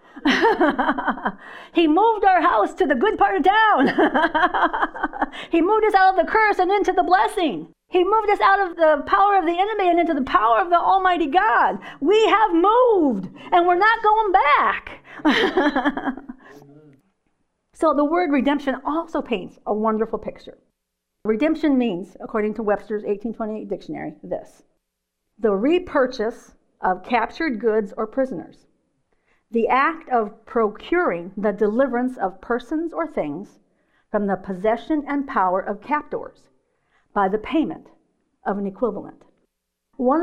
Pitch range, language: 215-335 Hz, English